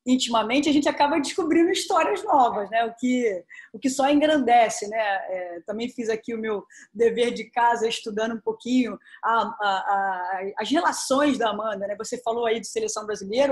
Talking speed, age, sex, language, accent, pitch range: 185 wpm, 20-39, female, Portuguese, Brazilian, 215-280 Hz